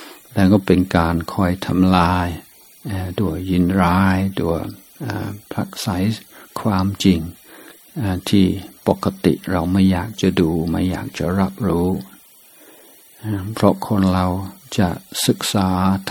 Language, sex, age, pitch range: Thai, male, 60-79, 90-100 Hz